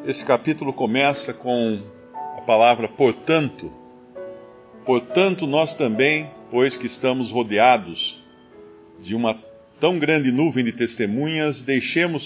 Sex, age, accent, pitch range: male, 50-69, Brazilian, 110-145 Hz